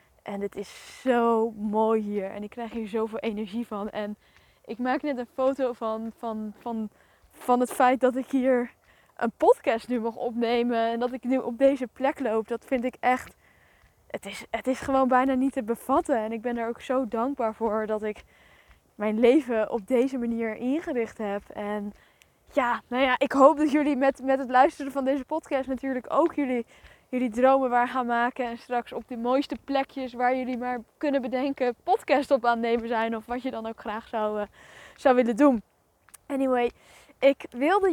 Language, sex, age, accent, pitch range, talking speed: Dutch, female, 10-29, Dutch, 225-265 Hz, 195 wpm